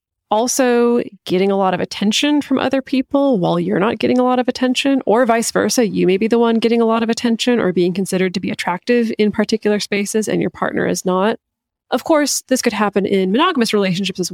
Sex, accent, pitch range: female, American, 185-225 Hz